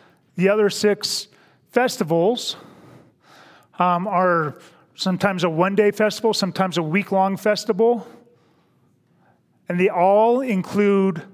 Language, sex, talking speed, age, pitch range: English, male, 105 wpm, 40-59, 170-200 Hz